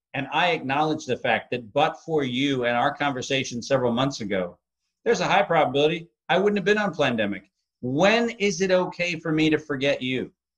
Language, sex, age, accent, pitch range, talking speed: English, male, 50-69, American, 135-170 Hz, 195 wpm